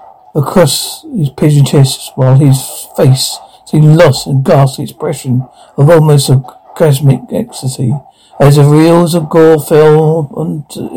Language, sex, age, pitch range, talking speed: English, male, 60-79, 130-160 Hz, 130 wpm